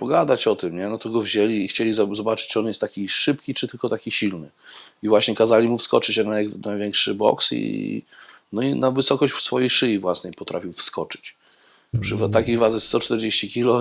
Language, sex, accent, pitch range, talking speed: Polish, male, native, 105-120 Hz, 190 wpm